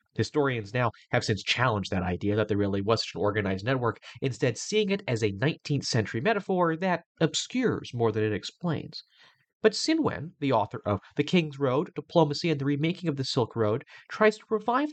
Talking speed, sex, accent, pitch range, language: 195 wpm, male, American, 120-185 Hz, English